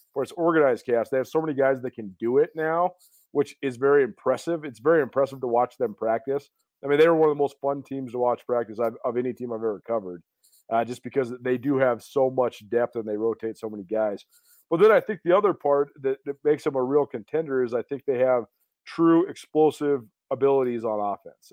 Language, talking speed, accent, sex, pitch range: English, 230 wpm, American, male, 120-145 Hz